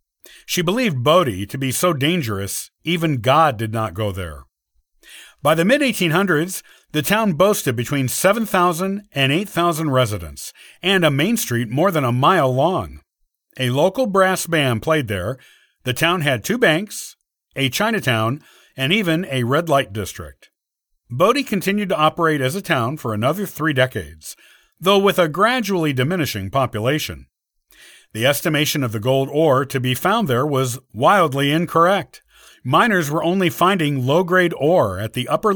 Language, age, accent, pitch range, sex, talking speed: English, 50-69, American, 125-180 Hz, male, 155 wpm